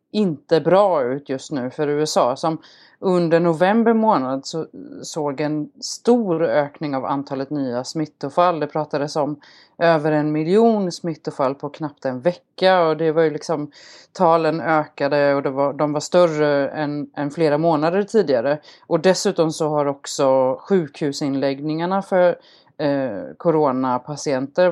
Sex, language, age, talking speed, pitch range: female, Swedish, 30-49, 140 wpm, 145-175 Hz